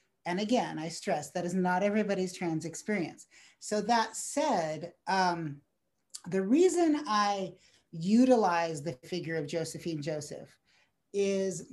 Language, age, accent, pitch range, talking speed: English, 40-59, American, 175-210 Hz, 125 wpm